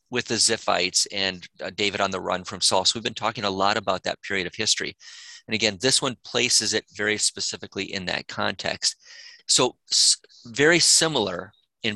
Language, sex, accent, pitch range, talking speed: English, male, American, 110-150 Hz, 180 wpm